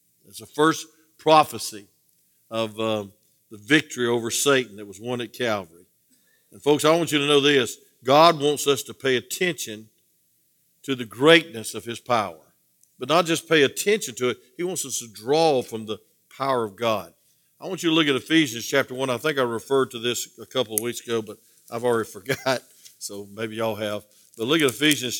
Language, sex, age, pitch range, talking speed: English, male, 50-69, 110-145 Hz, 200 wpm